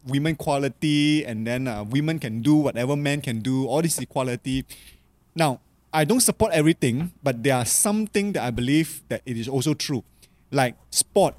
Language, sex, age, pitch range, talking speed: English, male, 20-39, 120-160 Hz, 185 wpm